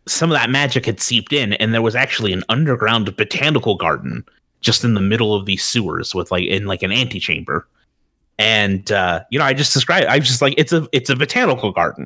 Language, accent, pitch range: English, American, 105-150 Hz